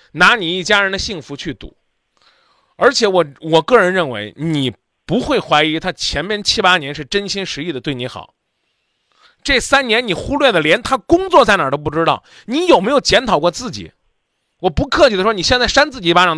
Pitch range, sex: 170-260 Hz, male